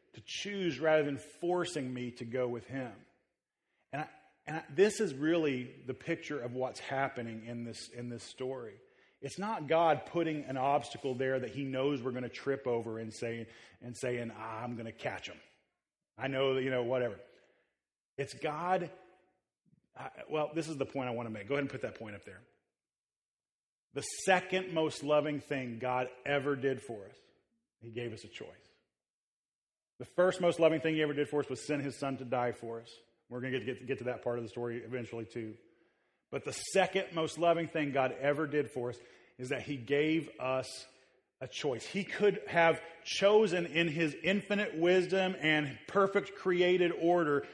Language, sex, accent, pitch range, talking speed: English, male, American, 130-180 Hz, 190 wpm